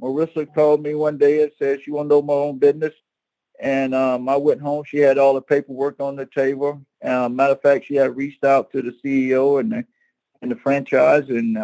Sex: male